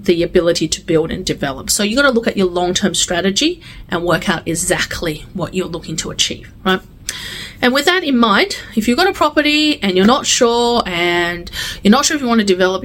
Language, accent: English, Australian